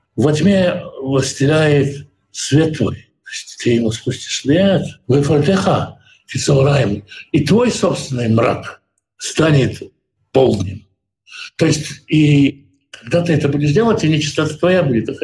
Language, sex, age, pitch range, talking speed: Russian, male, 60-79, 130-155 Hz, 115 wpm